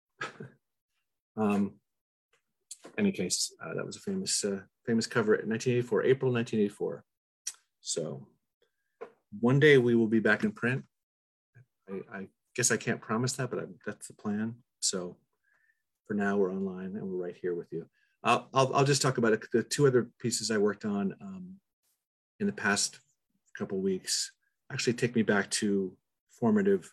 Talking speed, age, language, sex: 165 wpm, 40-59, English, male